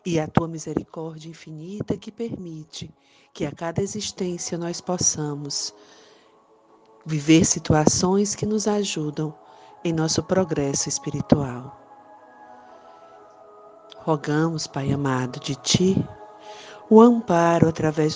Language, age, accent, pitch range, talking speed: Portuguese, 50-69, Brazilian, 145-180 Hz, 100 wpm